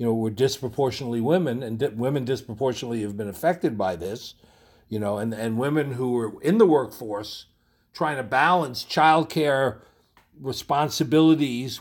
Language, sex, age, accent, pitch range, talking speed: English, male, 60-79, American, 120-165 Hz, 145 wpm